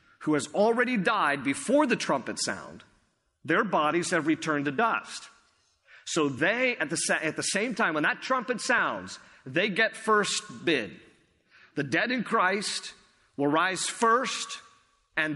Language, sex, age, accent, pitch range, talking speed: English, male, 50-69, American, 145-200 Hz, 150 wpm